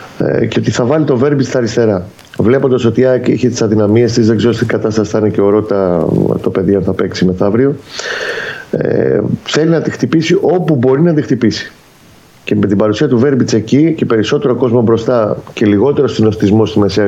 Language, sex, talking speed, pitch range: Greek, male, 185 wpm, 100-130 Hz